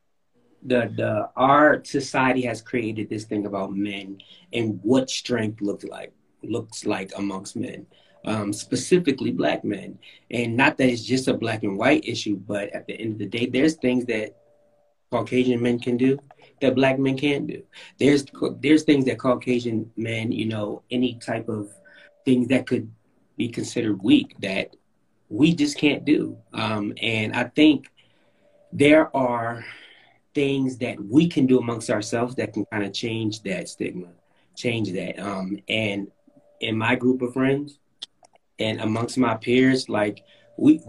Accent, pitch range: American, 115-145 Hz